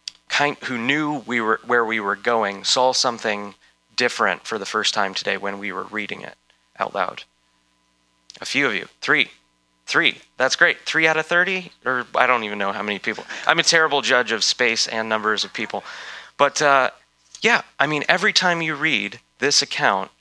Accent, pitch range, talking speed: American, 105-130 Hz, 195 wpm